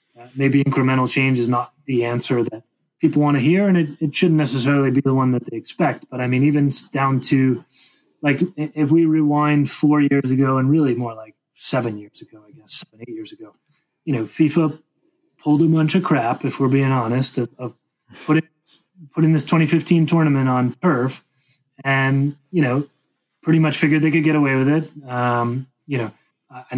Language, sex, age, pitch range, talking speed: English, male, 30-49, 125-150 Hz, 195 wpm